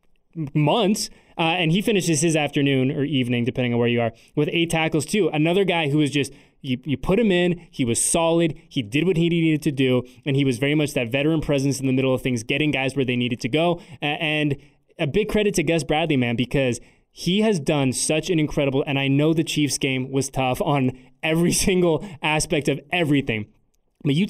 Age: 20-39